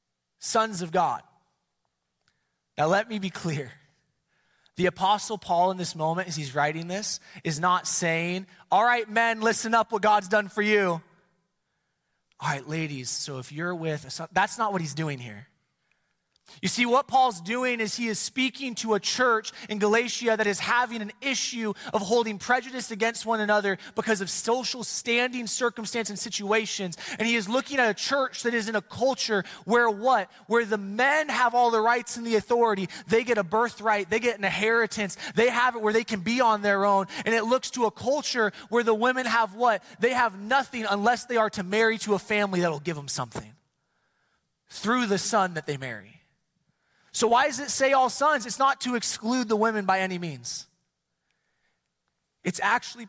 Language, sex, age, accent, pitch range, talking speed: English, male, 20-39, American, 180-235 Hz, 190 wpm